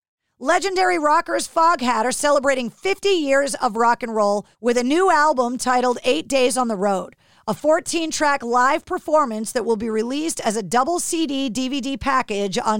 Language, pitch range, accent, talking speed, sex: English, 235-325 Hz, American, 170 wpm, female